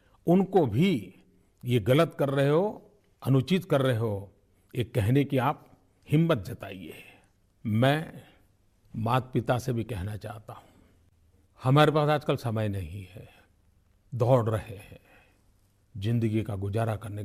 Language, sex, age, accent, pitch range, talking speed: Hindi, male, 40-59, native, 100-130 Hz, 130 wpm